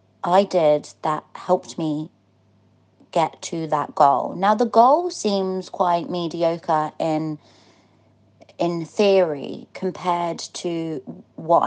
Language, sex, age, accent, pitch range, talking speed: English, female, 30-49, British, 155-180 Hz, 110 wpm